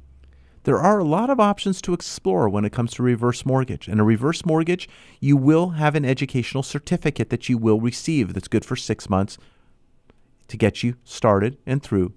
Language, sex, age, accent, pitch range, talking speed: English, male, 40-59, American, 105-140 Hz, 190 wpm